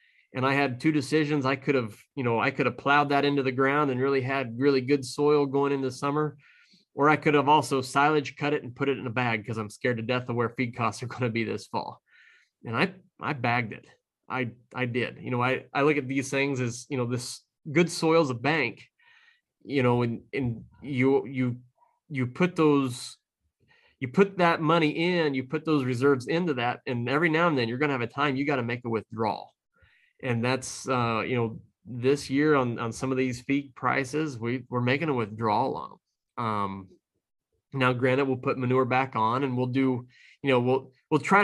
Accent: American